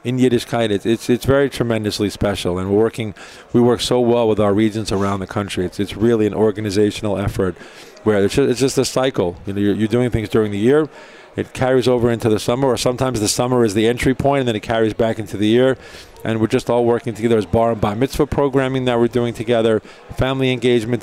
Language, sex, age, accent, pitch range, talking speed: English, male, 40-59, American, 105-125 Hz, 245 wpm